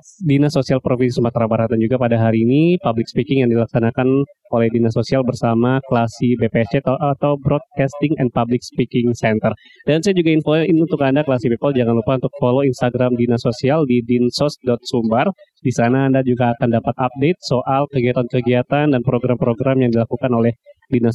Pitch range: 125-145 Hz